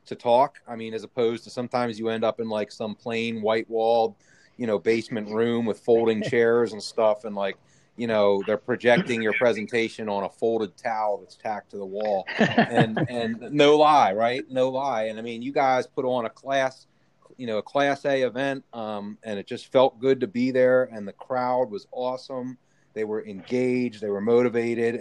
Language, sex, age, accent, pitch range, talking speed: English, male, 30-49, American, 110-130 Hz, 205 wpm